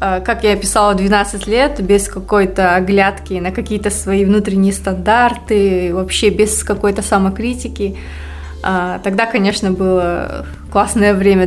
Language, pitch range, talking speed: Russian, 190-210 Hz, 115 wpm